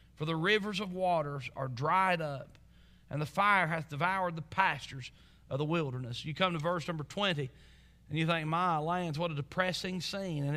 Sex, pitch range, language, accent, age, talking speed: male, 155-235 Hz, English, American, 40-59, 195 wpm